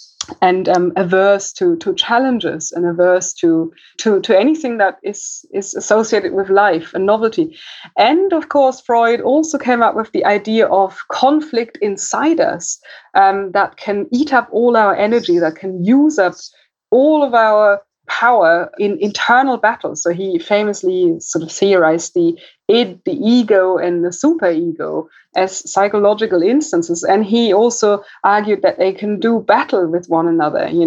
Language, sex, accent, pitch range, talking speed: English, female, German, 180-240 Hz, 160 wpm